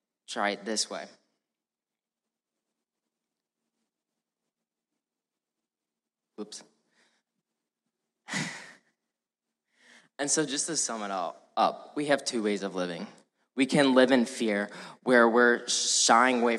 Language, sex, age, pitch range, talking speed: English, male, 10-29, 105-120 Hz, 100 wpm